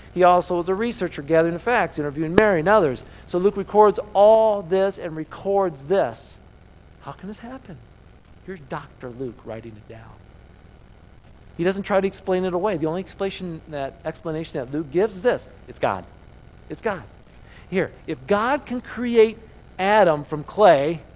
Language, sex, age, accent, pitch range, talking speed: English, male, 50-69, American, 150-210 Hz, 160 wpm